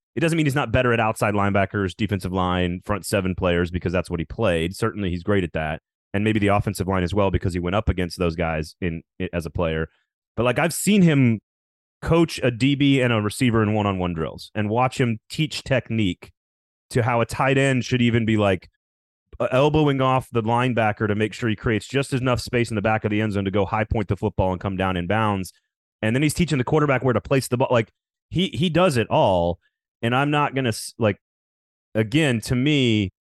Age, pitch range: 30-49, 90-125 Hz